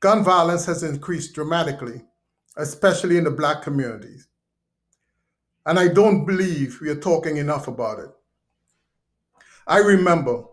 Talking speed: 125 wpm